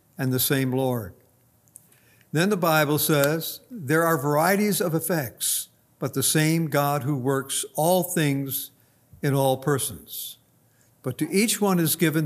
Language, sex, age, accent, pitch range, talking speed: English, male, 60-79, American, 135-175 Hz, 145 wpm